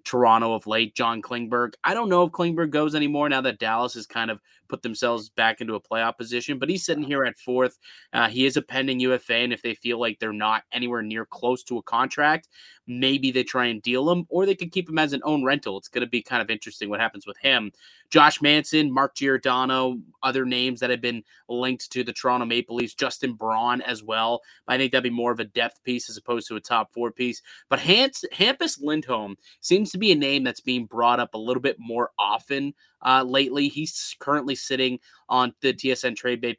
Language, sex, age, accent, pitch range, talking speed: English, male, 20-39, American, 120-145 Hz, 225 wpm